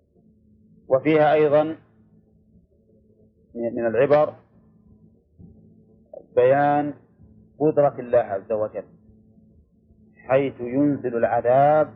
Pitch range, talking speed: 115-140 Hz, 60 wpm